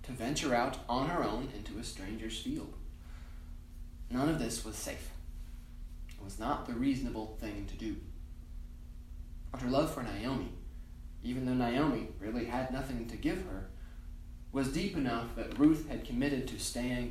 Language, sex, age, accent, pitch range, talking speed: English, male, 20-39, American, 80-125 Hz, 160 wpm